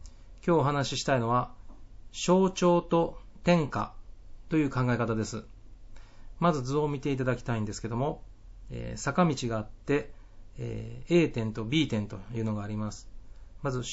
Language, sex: Japanese, male